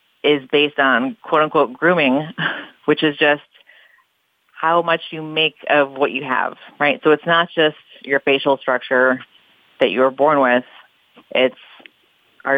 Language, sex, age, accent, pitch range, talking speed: English, female, 30-49, American, 135-155 Hz, 150 wpm